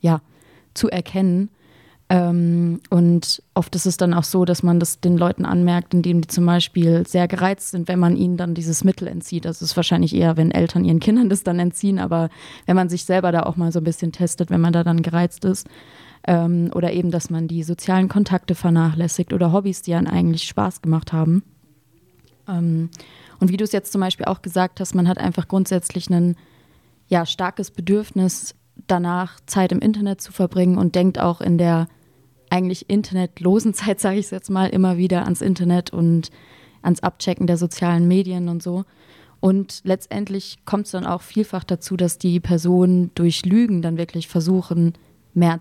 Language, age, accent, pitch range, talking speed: English, 20-39, German, 170-185 Hz, 190 wpm